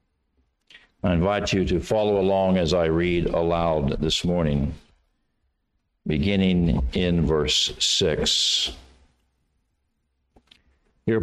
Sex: male